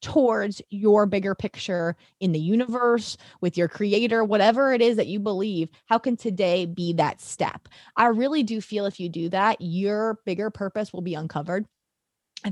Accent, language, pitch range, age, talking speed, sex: American, English, 180-220 Hz, 20-39, 175 wpm, female